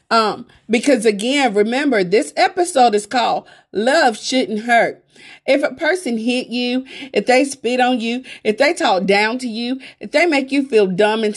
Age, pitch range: 40-59, 215-280 Hz